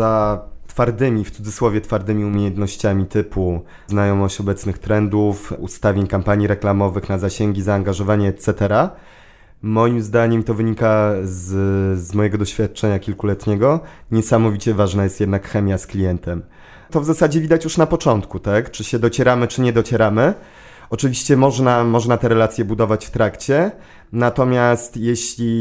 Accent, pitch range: native, 100-115 Hz